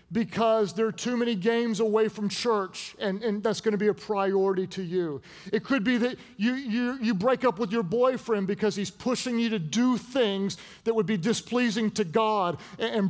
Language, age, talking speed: English, 40-59, 200 wpm